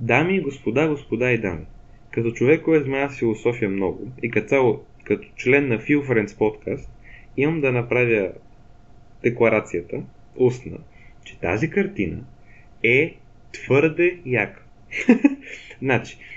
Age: 20-39